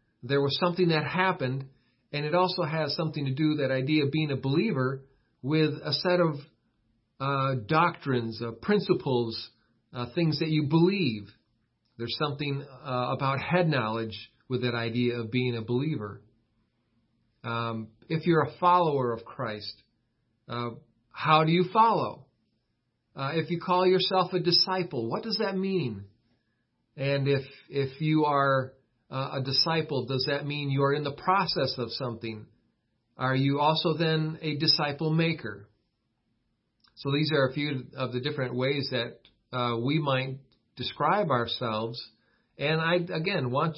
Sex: male